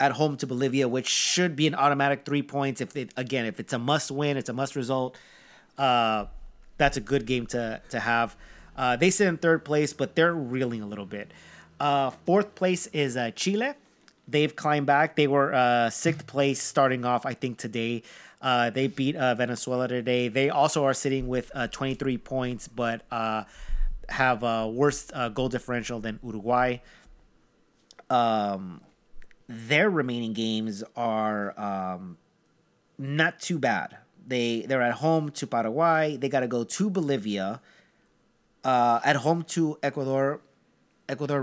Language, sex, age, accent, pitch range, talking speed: English, male, 30-49, American, 115-145 Hz, 160 wpm